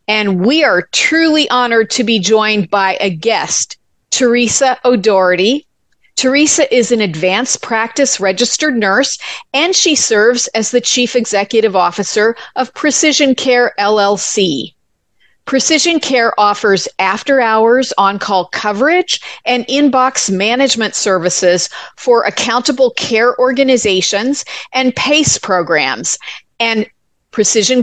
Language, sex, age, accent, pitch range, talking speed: English, female, 40-59, American, 200-265 Hz, 110 wpm